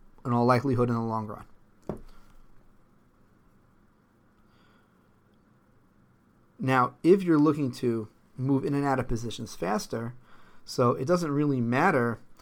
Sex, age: male, 30-49